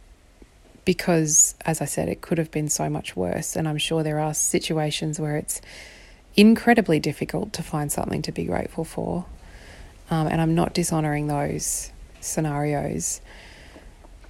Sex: female